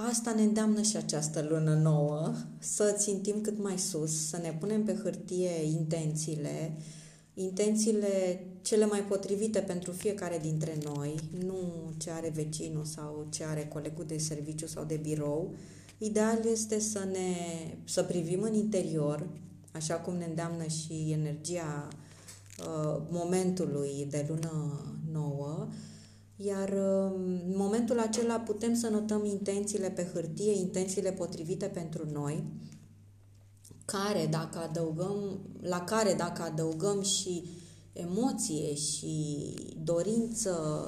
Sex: female